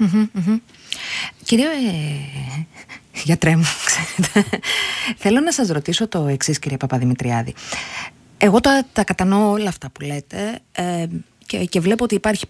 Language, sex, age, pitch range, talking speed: Greek, female, 30-49, 150-210 Hz, 135 wpm